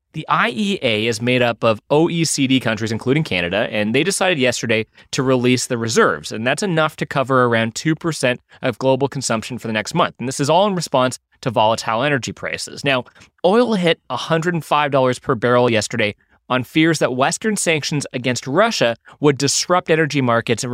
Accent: American